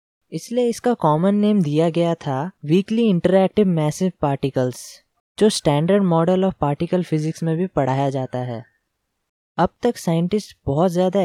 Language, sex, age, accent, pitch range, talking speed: Hindi, female, 20-39, native, 150-195 Hz, 145 wpm